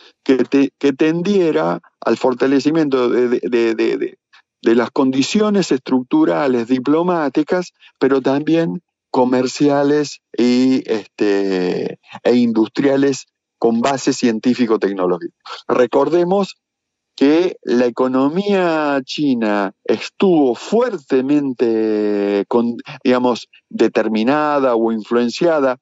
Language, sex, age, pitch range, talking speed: Spanish, male, 40-59, 115-145 Hz, 65 wpm